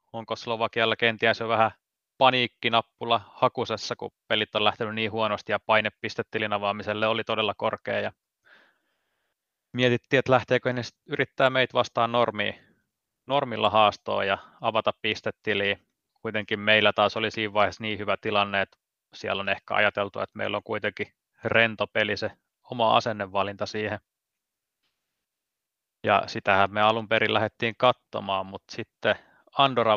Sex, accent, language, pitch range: male, native, Finnish, 105-115 Hz